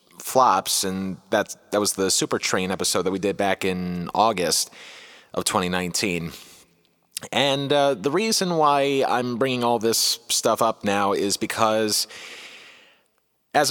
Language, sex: English, male